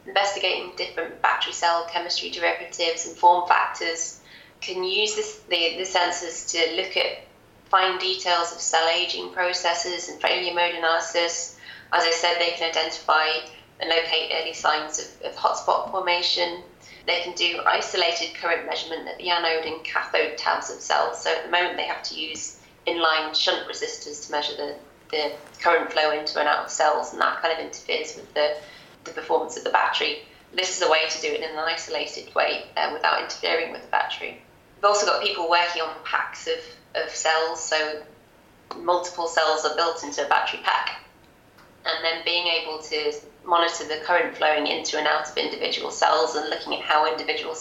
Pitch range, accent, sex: 160-180 Hz, British, female